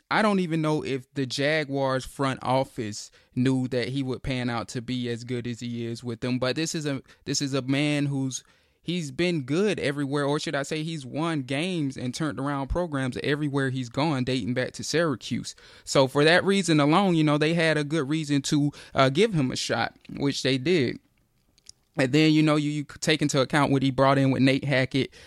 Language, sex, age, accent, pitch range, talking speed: English, male, 20-39, American, 130-145 Hz, 220 wpm